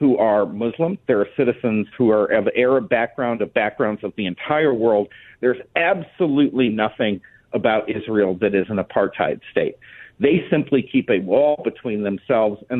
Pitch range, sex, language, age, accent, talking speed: 105-145 Hz, male, English, 50-69, American, 165 wpm